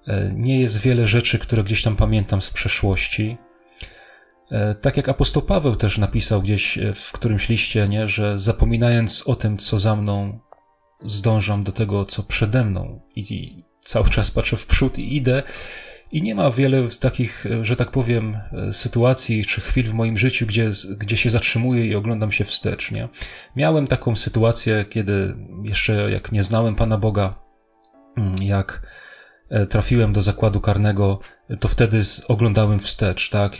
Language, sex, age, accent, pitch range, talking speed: Polish, male, 30-49, native, 105-120 Hz, 150 wpm